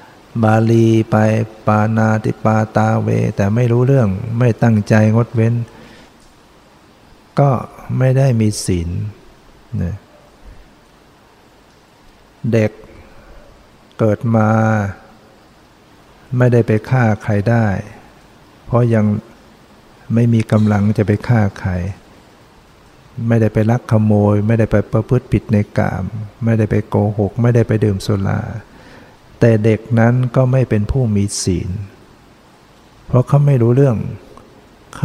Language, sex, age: Thai, male, 60-79